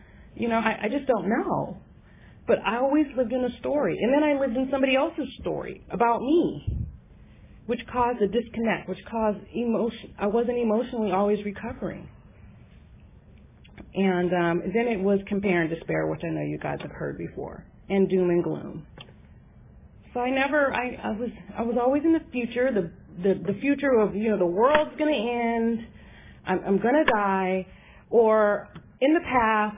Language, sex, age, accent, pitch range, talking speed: English, female, 30-49, American, 200-290 Hz, 180 wpm